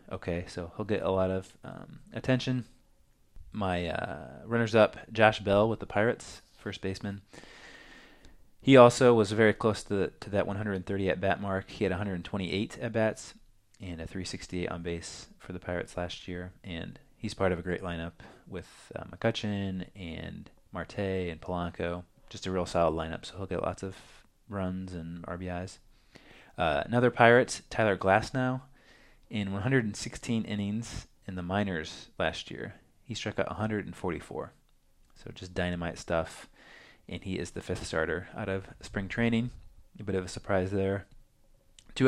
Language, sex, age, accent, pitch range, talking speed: English, male, 20-39, American, 90-110 Hz, 155 wpm